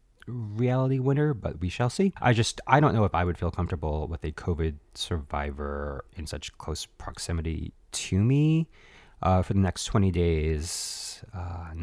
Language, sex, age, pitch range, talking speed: English, male, 30-49, 80-115 Hz, 165 wpm